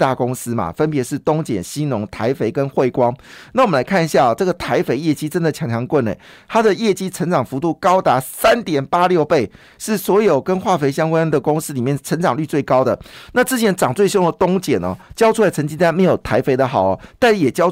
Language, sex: Chinese, male